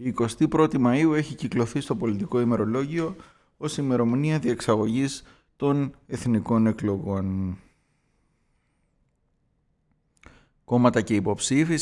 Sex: male